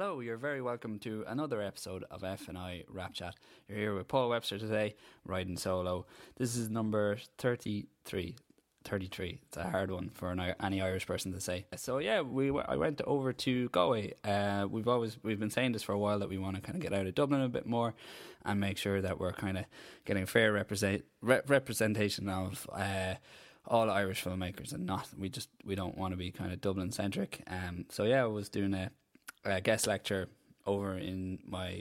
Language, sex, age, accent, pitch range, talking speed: English, male, 10-29, Irish, 95-110 Hz, 210 wpm